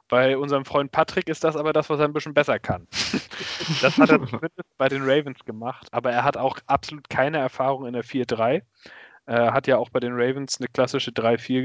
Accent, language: German, German